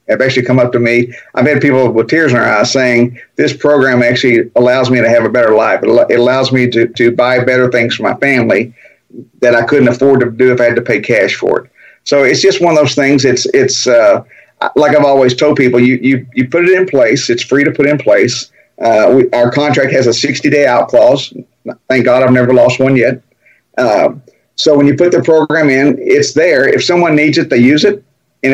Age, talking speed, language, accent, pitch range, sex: 50-69, 235 wpm, English, American, 125-145 Hz, male